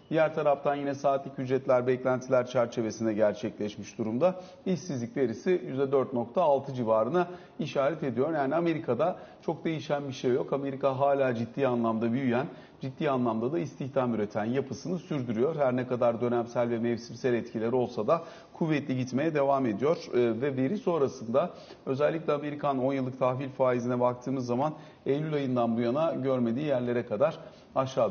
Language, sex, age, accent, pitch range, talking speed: Turkish, male, 40-59, native, 125-150 Hz, 140 wpm